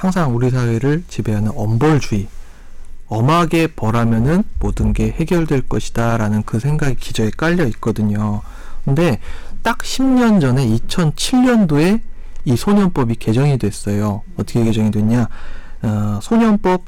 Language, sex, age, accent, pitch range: Korean, male, 40-59, native, 115-185 Hz